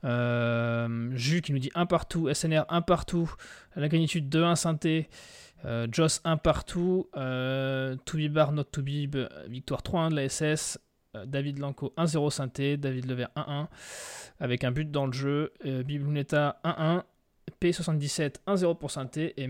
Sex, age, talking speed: male, 20-39, 155 wpm